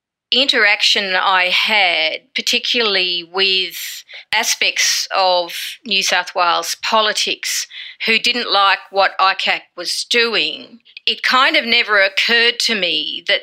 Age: 40-59